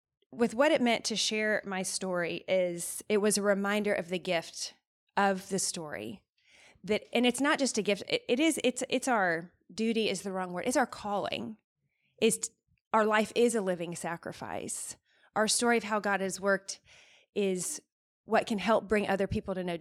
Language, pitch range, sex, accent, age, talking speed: English, 185-220 Hz, female, American, 20-39, 190 wpm